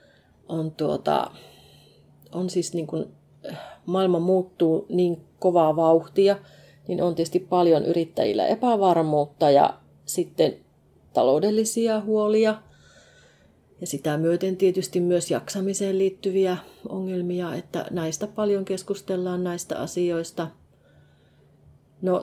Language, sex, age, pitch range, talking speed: Finnish, female, 30-49, 160-195 Hz, 95 wpm